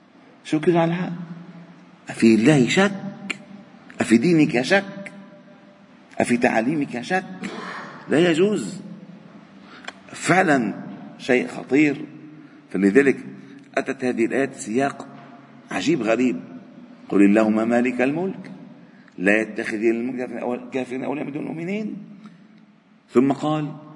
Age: 50-69